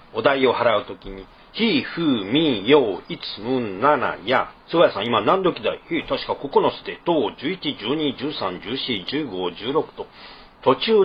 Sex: male